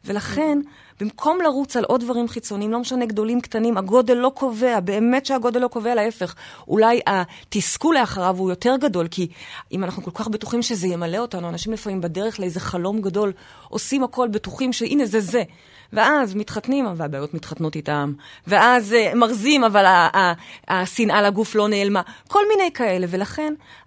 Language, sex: Hebrew, female